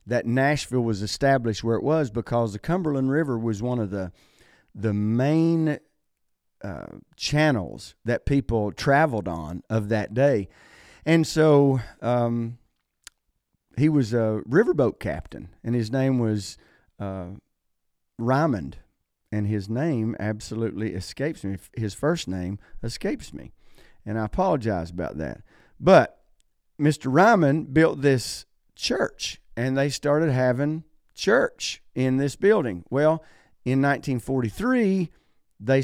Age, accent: 40-59, American